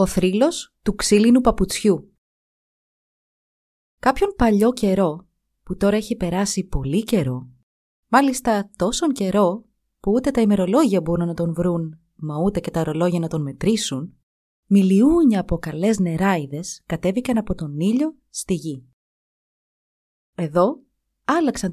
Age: 30-49